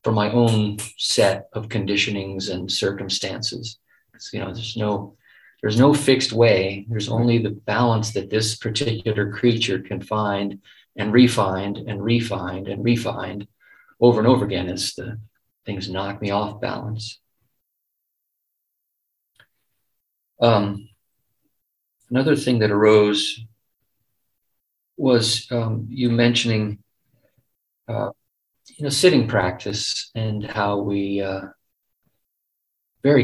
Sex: male